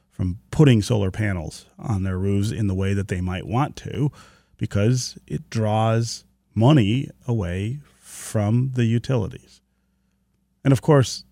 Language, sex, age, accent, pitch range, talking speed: English, male, 40-59, American, 100-140 Hz, 140 wpm